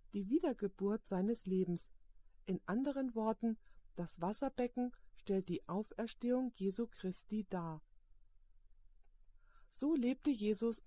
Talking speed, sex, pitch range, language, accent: 100 wpm, female, 155-225 Hz, German, German